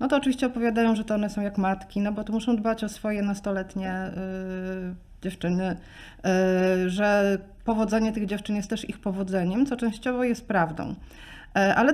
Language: Polish